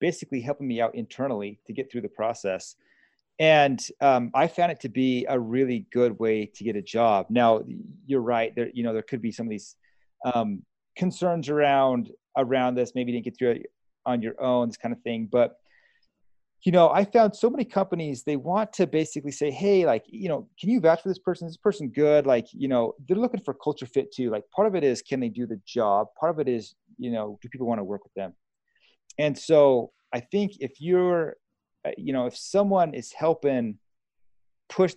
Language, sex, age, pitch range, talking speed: English, male, 30-49, 115-160 Hz, 215 wpm